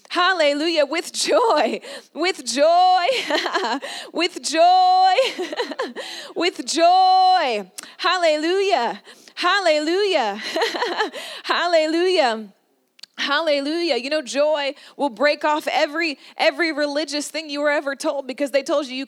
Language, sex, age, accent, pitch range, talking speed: English, female, 20-39, American, 280-335 Hz, 100 wpm